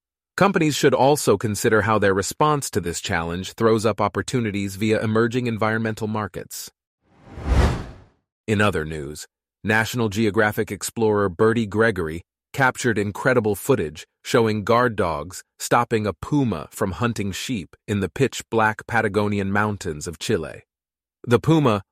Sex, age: male, 30-49